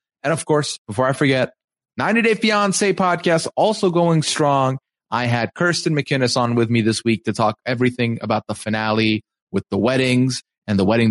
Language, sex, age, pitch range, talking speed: English, male, 30-49, 110-150 Hz, 185 wpm